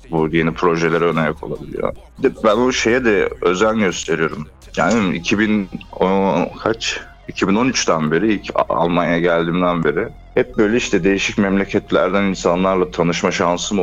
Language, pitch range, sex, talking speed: Turkish, 80-100 Hz, male, 120 wpm